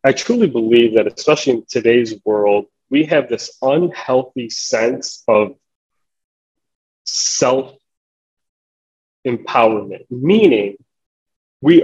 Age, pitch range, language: 30-49, 110-135 Hz, English